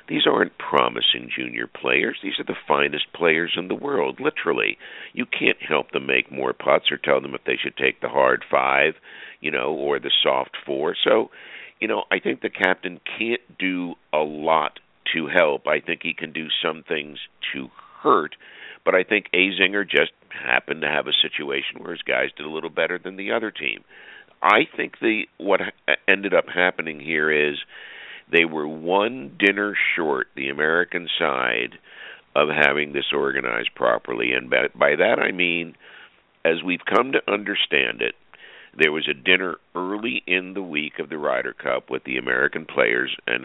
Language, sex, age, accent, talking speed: English, male, 60-79, American, 180 wpm